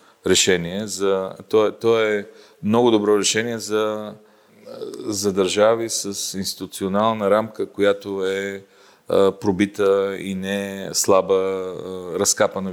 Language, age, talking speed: English, 40-59, 100 wpm